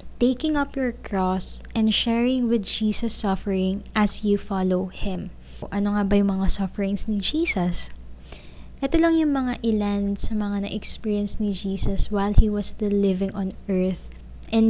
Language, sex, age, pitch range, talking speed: Filipino, female, 20-39, 195-225 Hz, 165 wpm